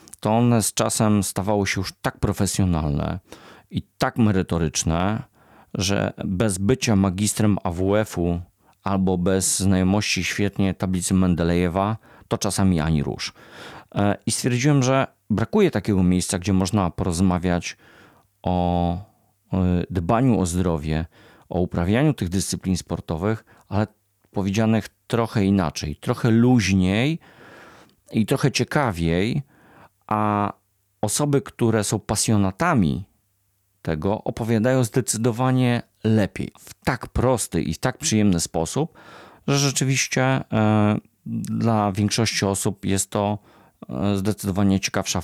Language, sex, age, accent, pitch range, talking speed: Polish, male, 40-59, native, 95-115 Hz, 105 wpm